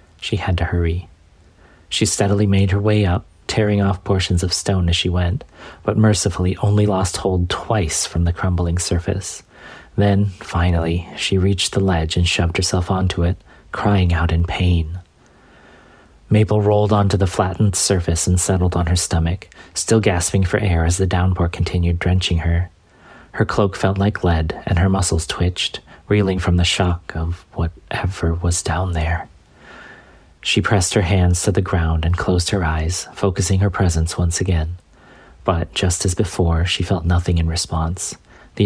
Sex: male